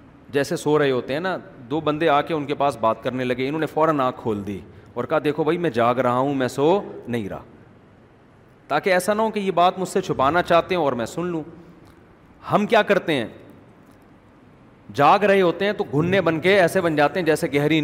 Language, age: Urdu, 40-59